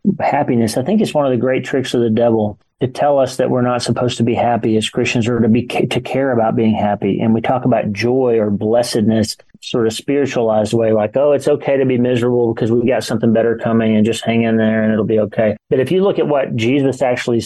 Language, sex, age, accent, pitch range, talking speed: English, male, 40-59, American, 115-135 Hz, 250 wpm